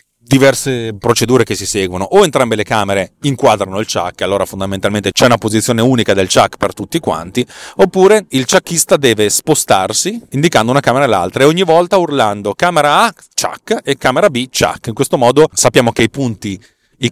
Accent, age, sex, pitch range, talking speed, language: native, 30-49, male, 105-140 Hz, 185 wpm, Italian